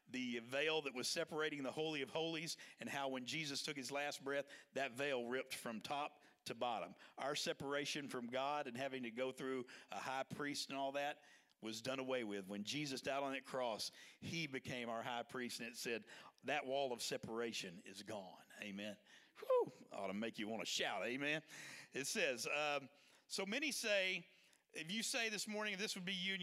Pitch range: 140-210 Hz